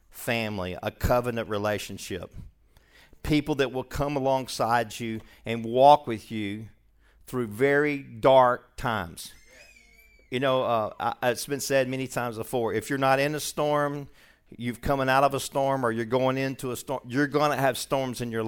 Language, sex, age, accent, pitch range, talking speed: English, male, 50-69, American, 110-135 Hz, 170 wpm